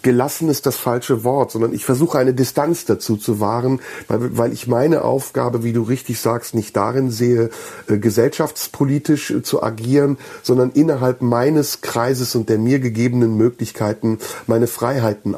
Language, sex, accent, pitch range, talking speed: German, male, German, 110-130 Hz, 150 wpm